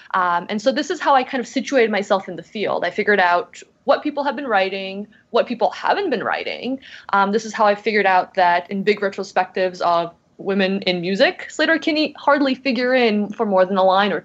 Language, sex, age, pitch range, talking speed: English, female, 20-39, 180-230 Hz, 225 wpm